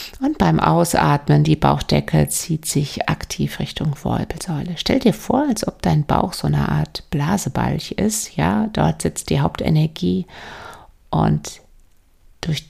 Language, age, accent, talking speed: German, 50-69, German, 135 wpm